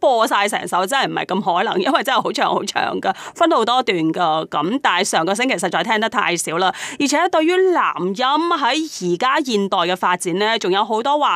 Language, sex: Chinese, female